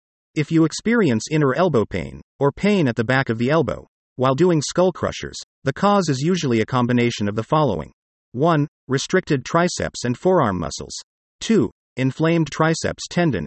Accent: American